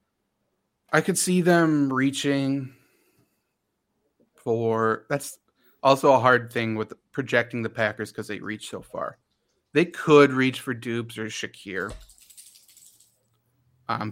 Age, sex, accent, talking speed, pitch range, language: 30-49, male, American, 125 wpm, 115-150 Hz, English